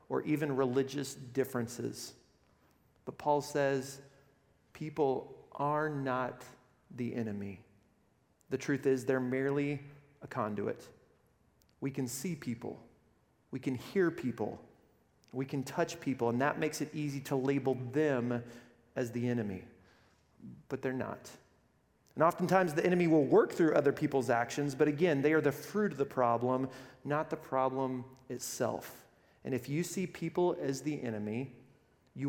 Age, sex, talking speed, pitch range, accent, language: 40-59, male, 145 wpm, 125-155 Hz, American, English